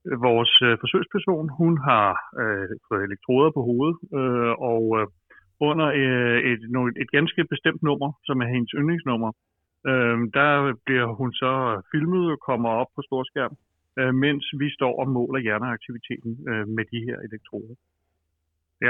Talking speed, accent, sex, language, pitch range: 150 wpm, native, male, Danish, 110-135 Hz